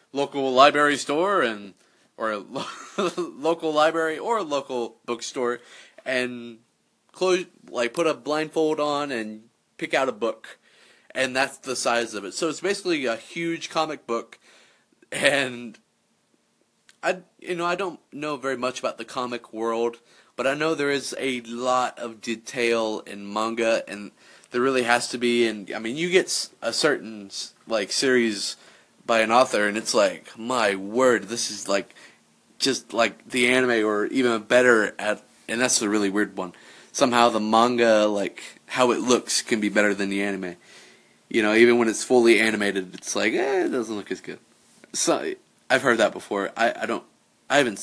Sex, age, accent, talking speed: male, 30-49, American, 175 wpm